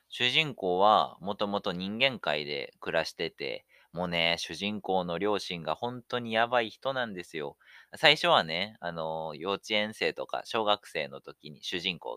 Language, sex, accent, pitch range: Japanese, male, native, 90-125 Hz